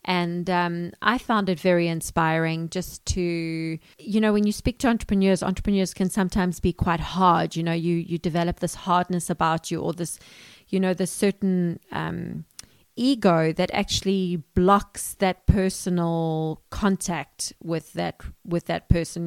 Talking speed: 155 wpm